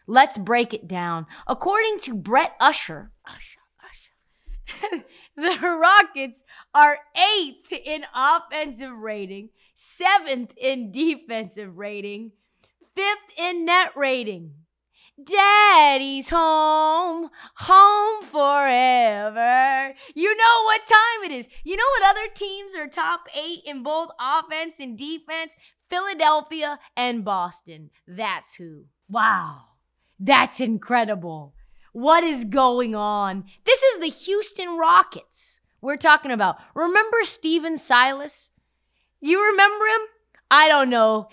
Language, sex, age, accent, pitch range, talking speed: English, female, 20-39, American, 205-330 Hz, 110 wpm